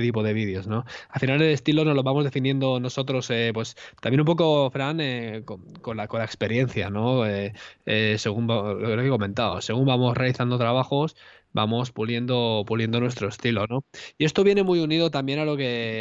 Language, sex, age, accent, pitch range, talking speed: Spanish, male, 20-39, Spanish, 115-145 Hz, 195 wpm